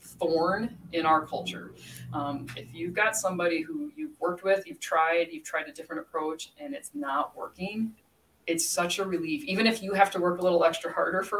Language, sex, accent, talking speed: English, female, American, 205 wpm